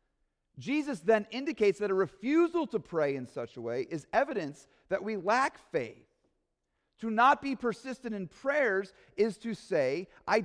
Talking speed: 160 wpm